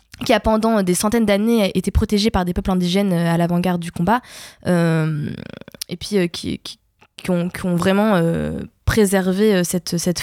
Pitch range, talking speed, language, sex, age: 175-210 Hz, 180 wpm, French, female, 20-39